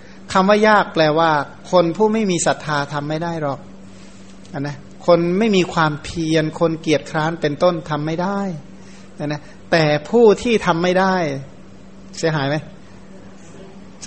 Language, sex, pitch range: Thai, male, 150-180 Hz